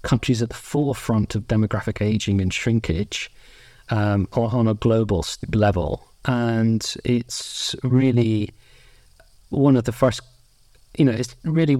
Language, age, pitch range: English, 30-49, 110-130 Hz